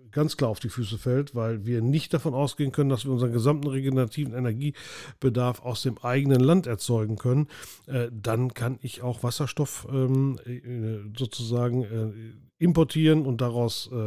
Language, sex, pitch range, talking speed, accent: German, male, 120-145 Hz, 140 wpm, German